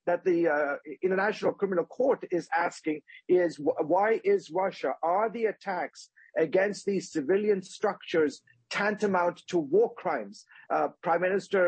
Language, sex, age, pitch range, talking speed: English, male, 50-69, 165-215 Hz, 135 wpm